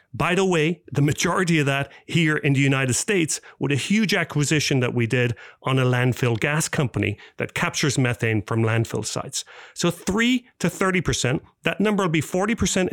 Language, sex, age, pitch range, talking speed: English, male, 40-59, 145-190 Hz, 180 wpm